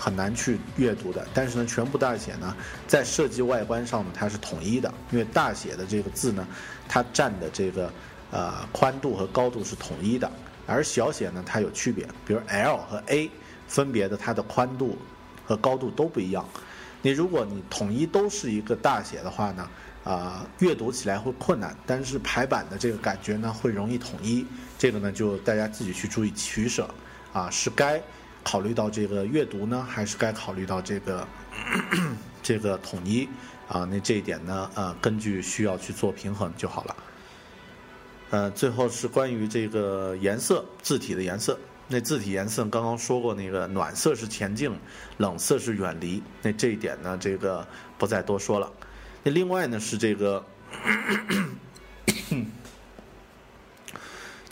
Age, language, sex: 50-69, Chinese, male